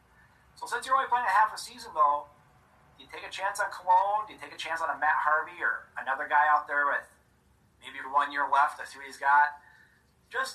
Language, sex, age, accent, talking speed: English, male, 40-59, American, 240 wpm